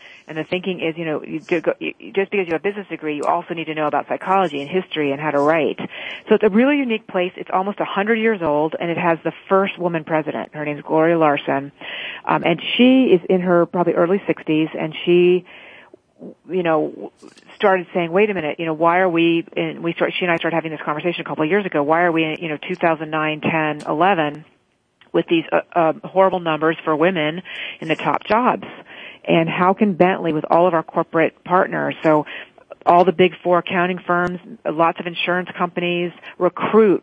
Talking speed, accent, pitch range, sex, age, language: 215 wpm, American, 155-185 Hz, female, 40-59, English